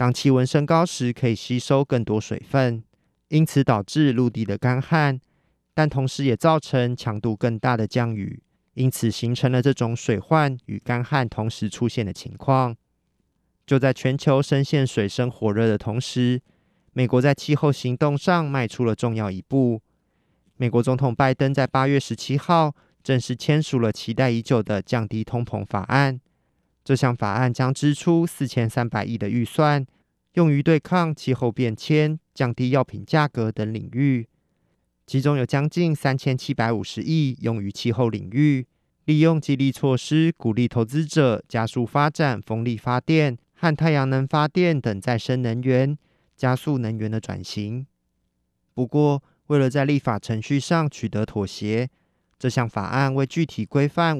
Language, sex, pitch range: Chinese, male, 115-145 Hz